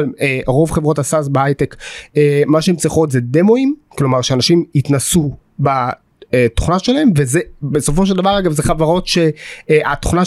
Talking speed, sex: 145 wpm, male